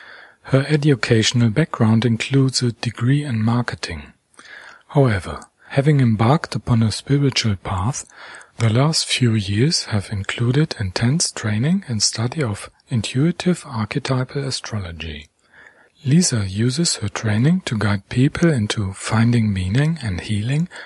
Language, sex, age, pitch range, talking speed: English, male, 40-59, 105-140 Hz, 120 wpm